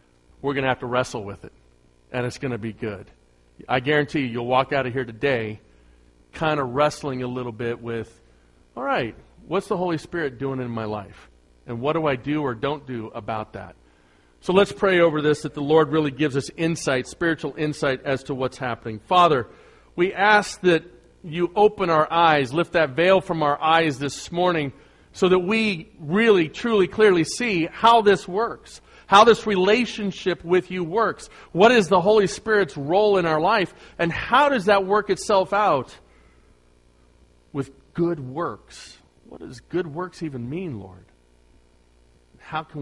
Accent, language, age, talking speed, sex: American, English, 40-59, 180 wpm, male